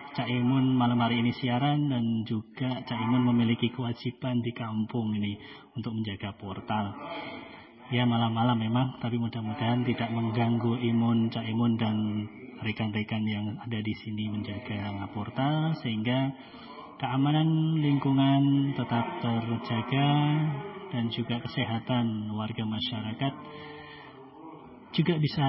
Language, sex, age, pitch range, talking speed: Malay, male, 30-49, 115-140 Hz, 115 wpm